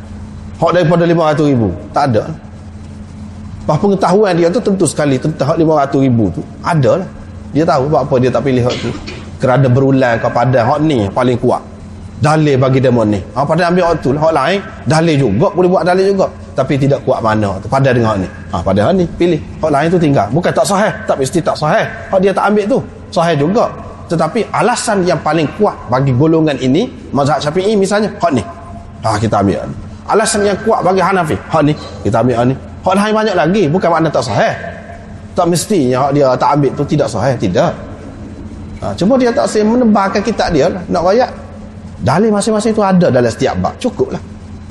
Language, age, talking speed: Malay, 30-49, 200 wpm